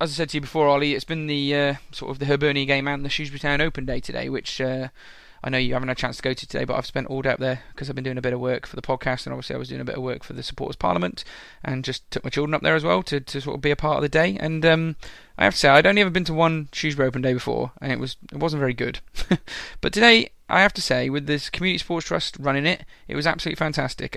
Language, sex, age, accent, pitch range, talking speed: English, male, 20-39, British, 130-155 Hz, 315 wpm